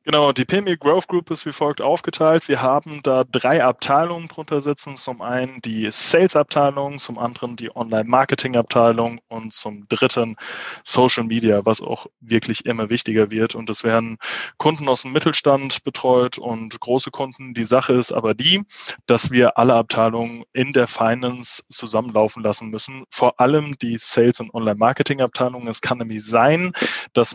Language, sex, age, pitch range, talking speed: German, male, 20-39, 115-145 Hz, 160 wpm